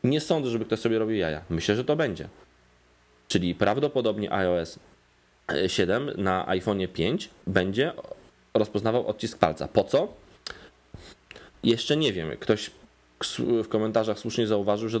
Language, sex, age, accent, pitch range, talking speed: Polish, male, 20-39, native, 90-115 Hz, 130 wpm